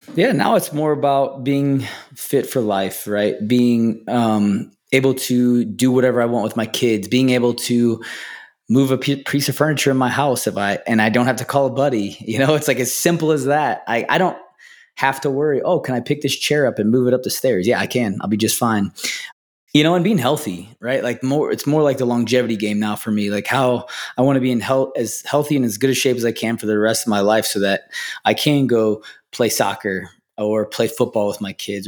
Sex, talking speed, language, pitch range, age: male, 245 wpm, English, 105-130 Hz, 20-39